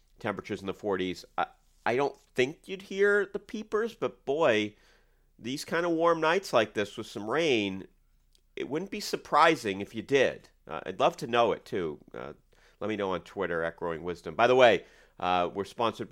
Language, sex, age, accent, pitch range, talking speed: English, male, 40-59, American, 95-145 Hz, 195 wpm